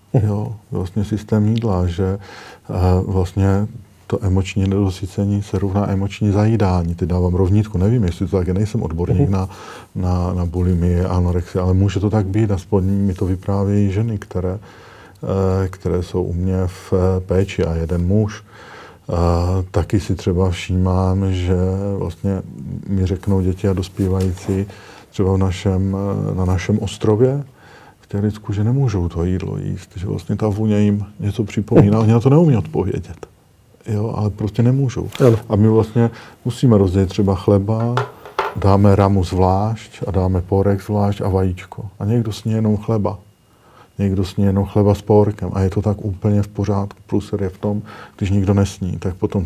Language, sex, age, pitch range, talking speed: Slovak, male, 50-69, 95-105 Hz, 160 wpm